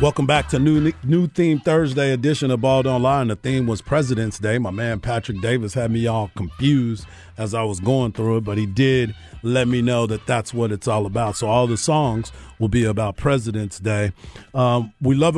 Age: 40-59